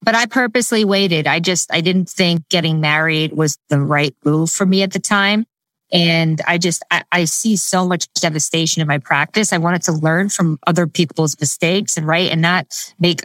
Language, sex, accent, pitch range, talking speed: English, female, American, 160-195 Hz, 205 wpm